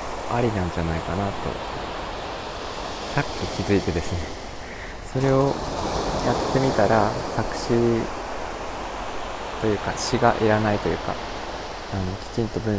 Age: 20-39